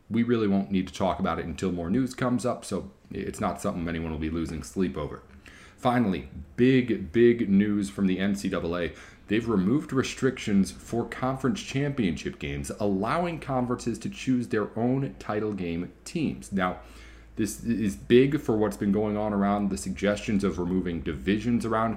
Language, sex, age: English, male, 40-59